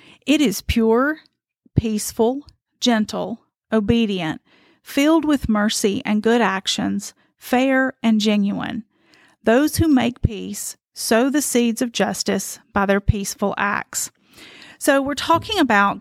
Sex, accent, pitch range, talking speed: female, American, 210-270 Hz, 120 wpm